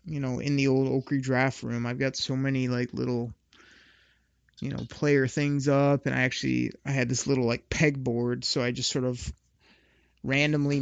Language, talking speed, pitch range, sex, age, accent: English, 190 wpm, 125-145 Hz, male, 30-49, American